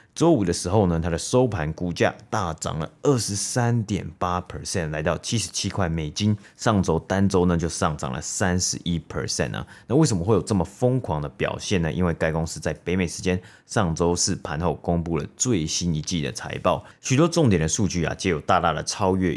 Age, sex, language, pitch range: 30-49, male, Chinese, 80-100 Hz